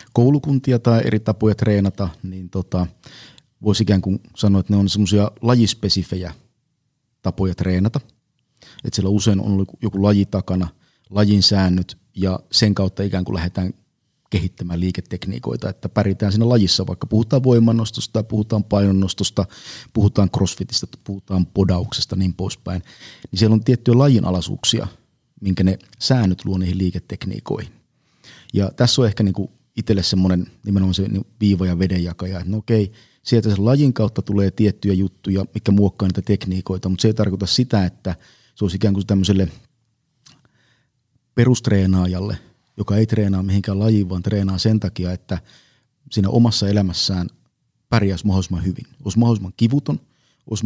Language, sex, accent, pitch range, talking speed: Finnish, male, native, 95-115 Hz, 145 wpm